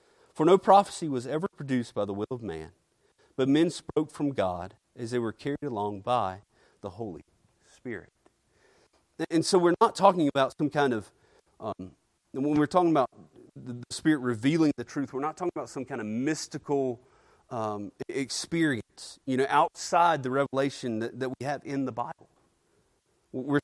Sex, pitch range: male, 120-155 Hz